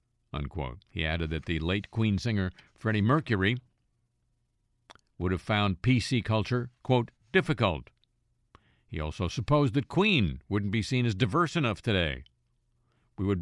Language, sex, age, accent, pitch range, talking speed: English, male, 50-69, American, 95-130 Hz, 140 wpm